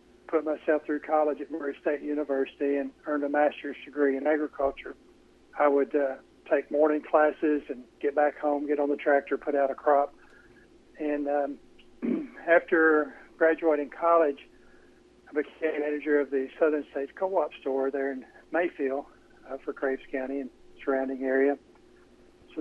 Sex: male